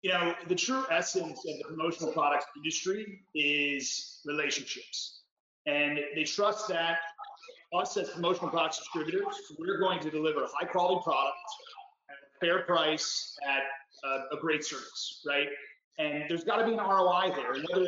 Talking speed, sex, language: 160 wpm, male, English